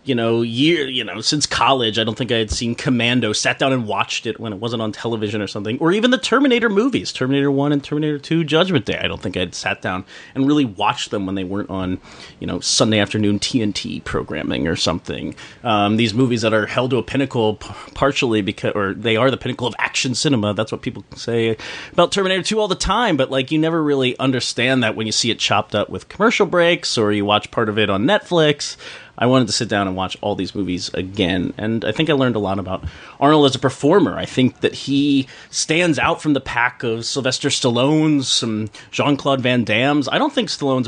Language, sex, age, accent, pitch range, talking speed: English, male, 30-49, American, 110-150 Hz, 230 wpm